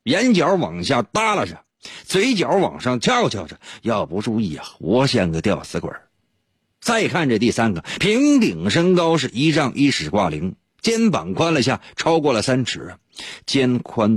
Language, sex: Chinese, male